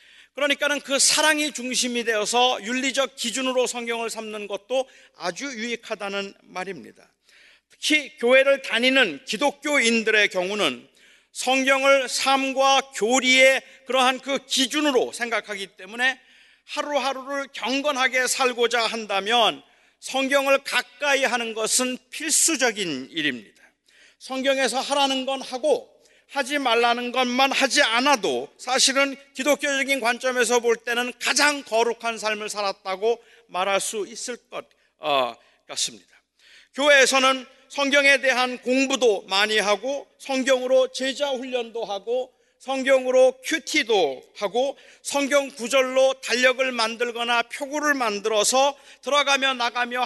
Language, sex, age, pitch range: Korean, male, 40-59, 235-275 Hz